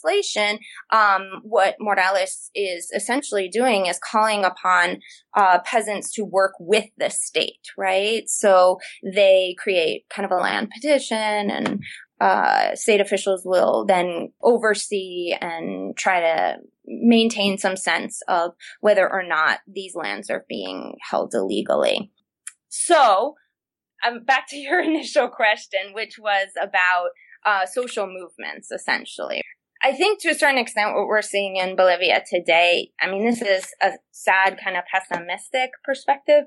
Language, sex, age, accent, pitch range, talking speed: English, female, 20-39, American, 190-235 Hz, 140 wpm